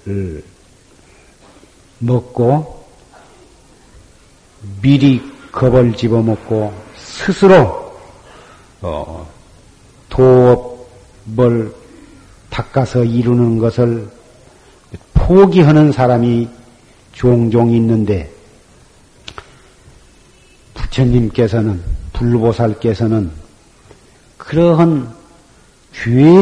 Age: 50-69